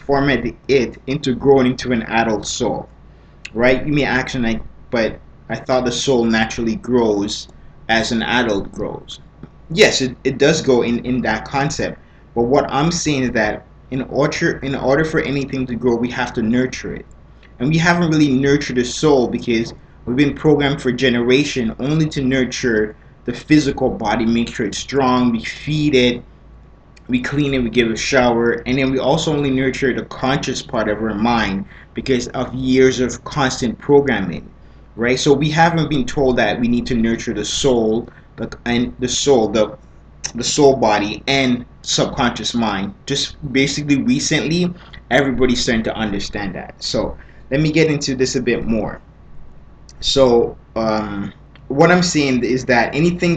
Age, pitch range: 20-39, 115-140 Hz